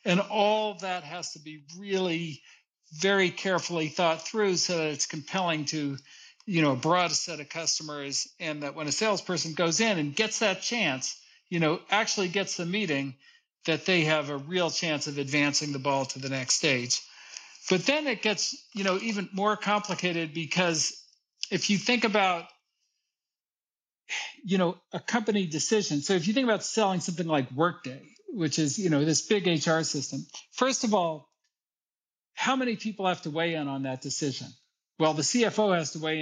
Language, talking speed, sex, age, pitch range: English, 180 wpm, male, 50-69, 150-195 Hz